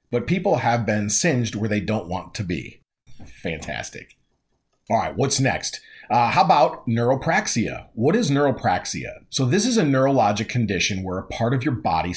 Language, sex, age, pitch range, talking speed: English, male, 40-59, 100-145 Hz, 175 wpm